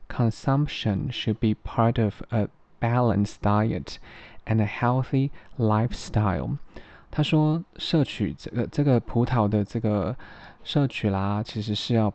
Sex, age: male, 20-39